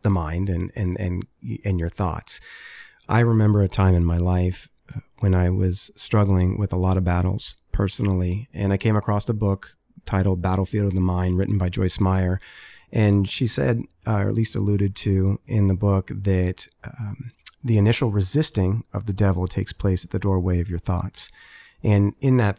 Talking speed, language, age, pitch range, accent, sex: 185 wpm, English, 30-49, 90-105 Hz, American, male